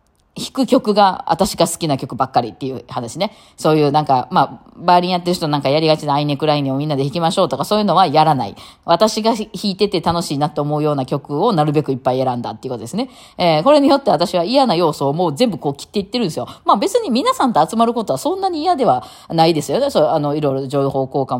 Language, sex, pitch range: Japanese, female, 140-215 Hz